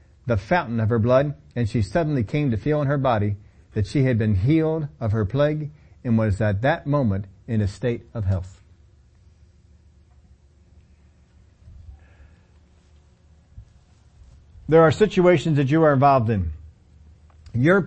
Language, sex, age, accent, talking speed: English, male, 50-69, American, 140 wpm